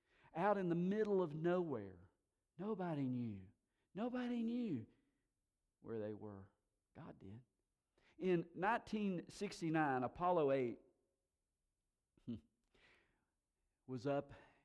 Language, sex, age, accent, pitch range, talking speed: English, male, 50-69, American, 105-140 Hz, 85 wpm